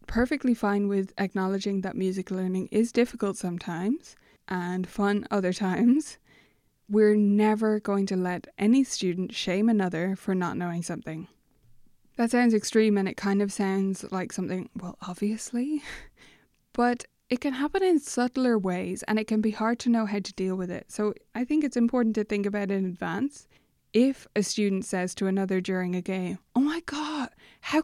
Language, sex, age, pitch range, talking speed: English, female, 20-39, 185-240 Hz, 175 wpm